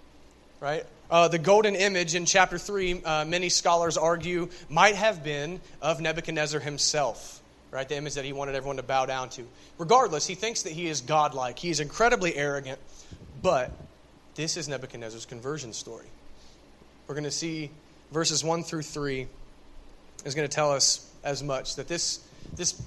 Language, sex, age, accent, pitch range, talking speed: English, male, 30-49, American, 140-170 Hz, 170 wpm